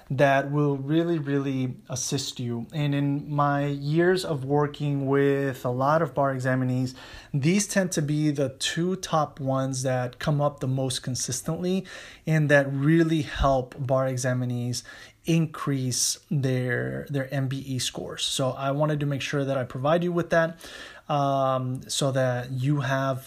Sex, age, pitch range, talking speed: male, 20-39, 130-155 Hz, 155 wpm